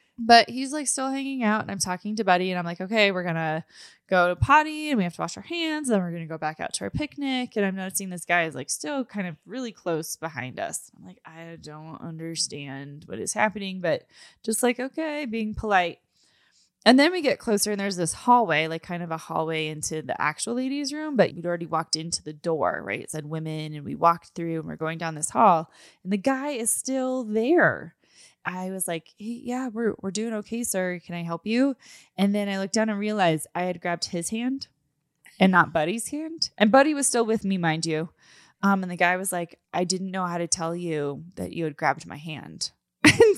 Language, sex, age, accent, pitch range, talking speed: English, female, 20-39, American, 170-255 Hz, 235 wpm